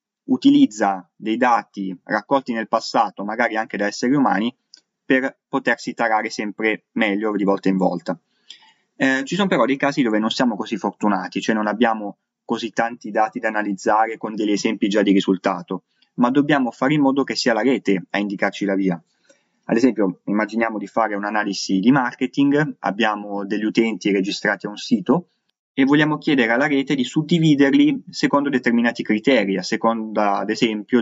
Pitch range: 105-140 Hz